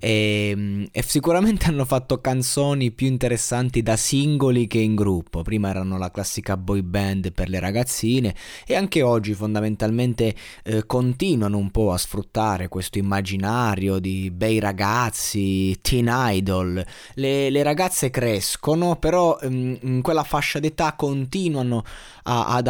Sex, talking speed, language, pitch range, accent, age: male, 130 wpm, Italian, 100-130 Hz, native, 20-39